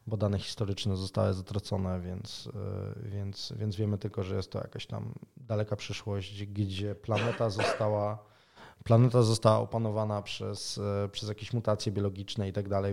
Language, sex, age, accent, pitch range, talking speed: Polish, male, 20-39, native, 100-115 Hz, 145 wpm